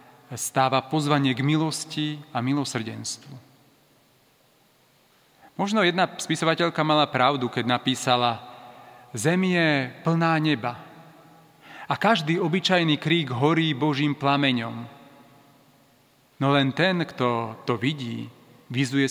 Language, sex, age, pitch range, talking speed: Slovak, male, 40-59, 125-155 Hz, 95 wpm